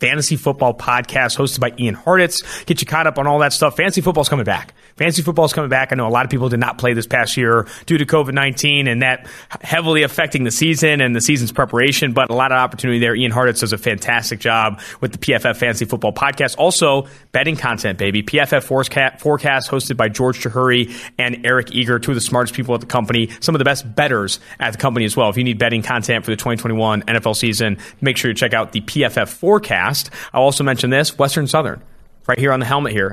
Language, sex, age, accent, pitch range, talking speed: English, male, 30-49, American, 115-145 Hz, 230 wpm